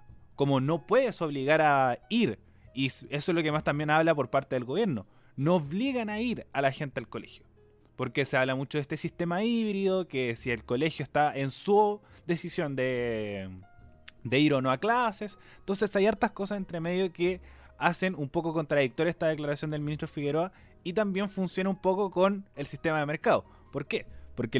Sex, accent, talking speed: male, Argentinian, 195 wpm